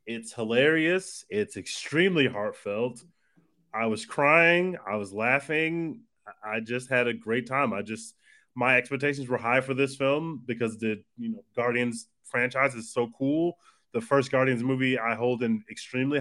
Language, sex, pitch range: English, male, 115-145 Hz